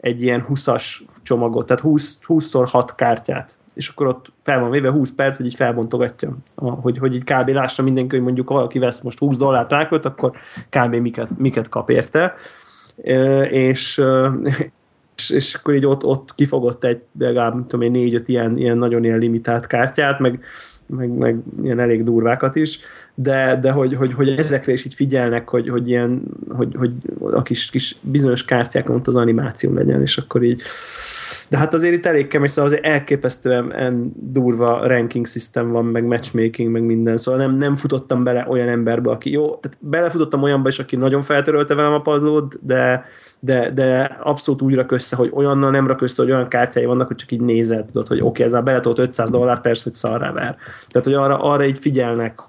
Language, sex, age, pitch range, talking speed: Hungarian, male, 20-39, 120-140 Hz, 190 wpm